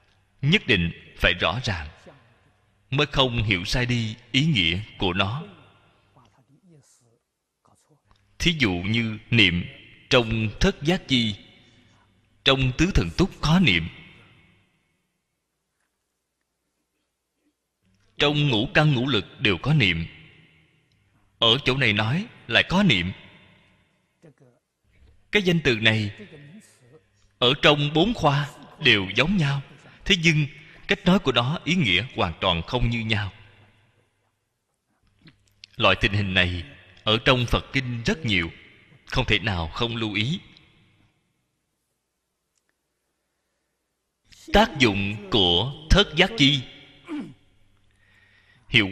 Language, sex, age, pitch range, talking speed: Vietnamese, male, 20-39, 100-145 Hz, 110 wpm